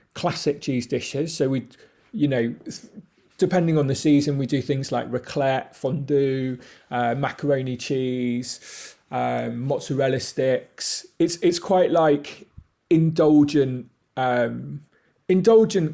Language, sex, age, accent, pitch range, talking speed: English, male, 30-49, British, 130-165 Hz, 115 wpm